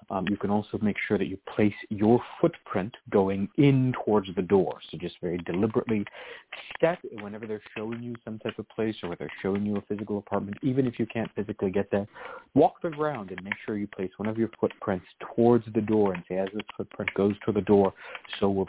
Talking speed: 225 wpm